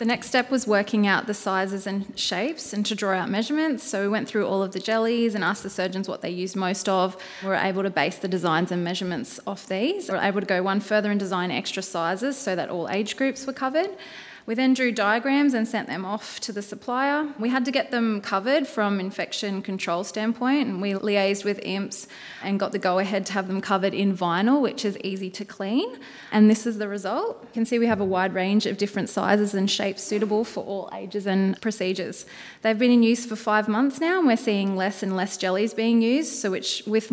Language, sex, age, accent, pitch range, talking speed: English, female, 20-39, Australian, 190-230 Hz, 235 wpm